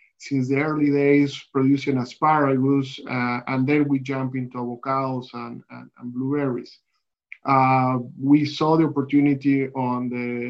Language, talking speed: English, 135 wpm